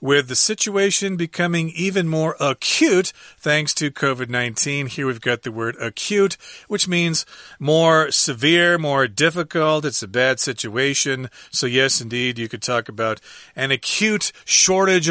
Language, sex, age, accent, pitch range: Chinese, male, 40-59, American, 130-160 Hz